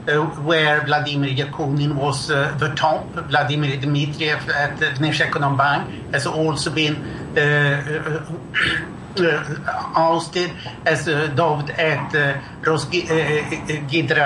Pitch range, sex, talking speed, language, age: 145-165 Hz, male, 115 wpm, English, 60-79